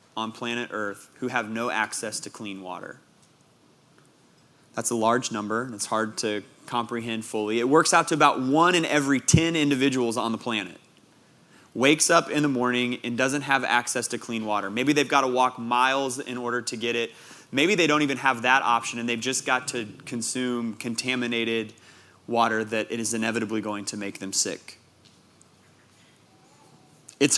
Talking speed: 180 wpm